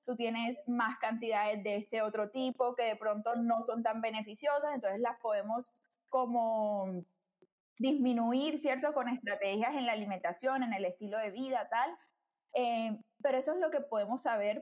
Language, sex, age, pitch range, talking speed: Spanish, female, 20-39, 210-260 Hz, 165 wpm